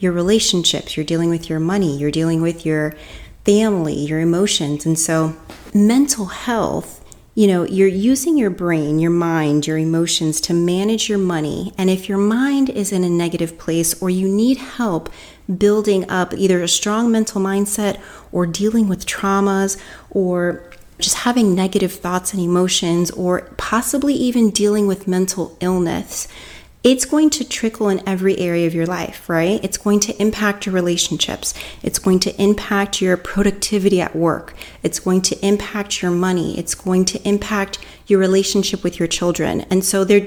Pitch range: 170-205 Hz